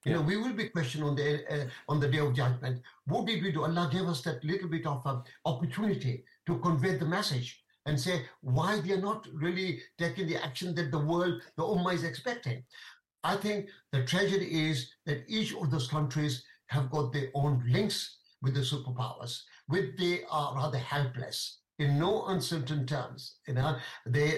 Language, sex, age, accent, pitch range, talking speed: English, male, 60-79, Indian, 140-180 Hz, 190 wpm